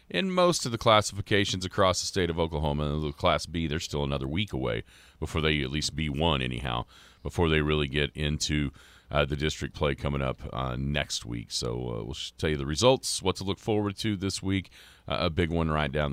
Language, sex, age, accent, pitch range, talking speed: English, male, 40-59, American, 75-120 Hz, 220 wpm